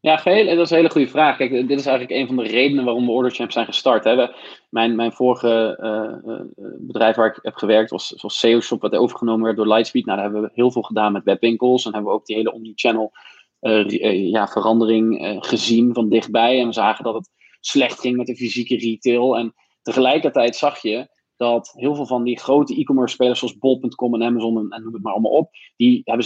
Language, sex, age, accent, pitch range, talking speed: Dutch, male, 20-39, Dutch, 115-125 Hz, 225 wpm